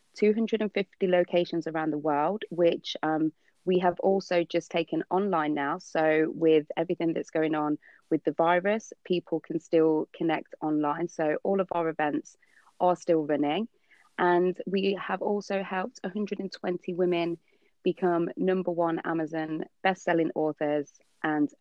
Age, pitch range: 20-39, 155-180 Hz